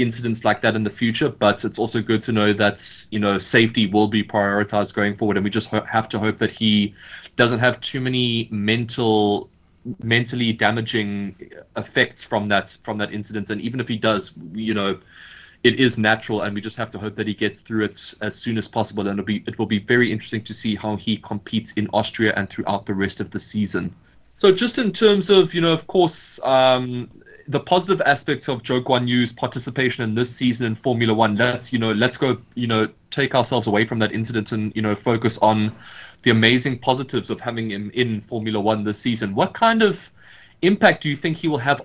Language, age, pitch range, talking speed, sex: English, 20-39, 105-130 Hz, 220 wpm, male